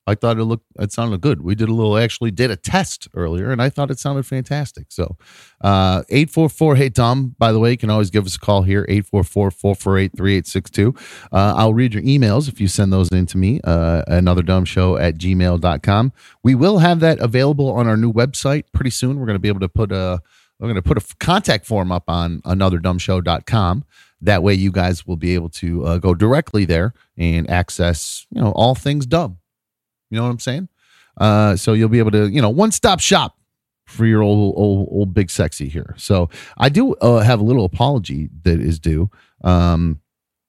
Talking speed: 205 wpm